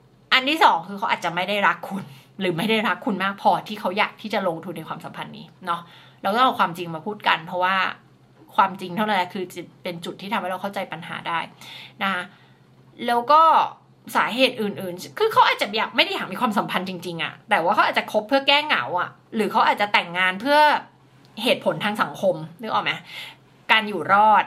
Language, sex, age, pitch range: Thai, female, 20-39, 180-245 Hz